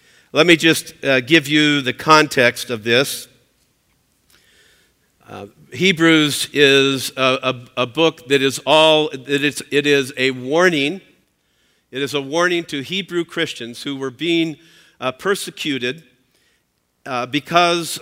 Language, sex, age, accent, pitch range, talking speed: English, male, 50-69, American, 135-185 Hz, 135 wpm